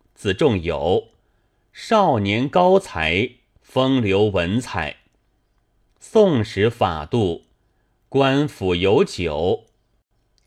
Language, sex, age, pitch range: Chinese, male, 30-49, 90-130 Hz